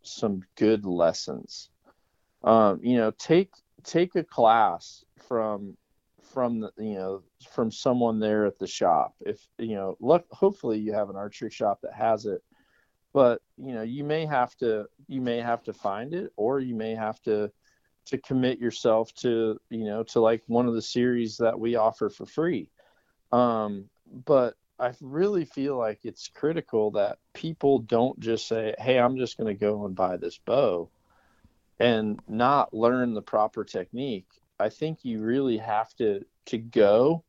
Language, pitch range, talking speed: English, 105-130 Hz, 170 wpm